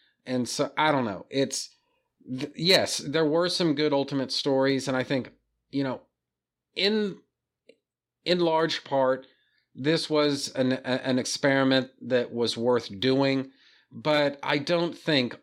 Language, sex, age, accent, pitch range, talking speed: English, male, 40-59, American, 120-150 Hz, 145 wpm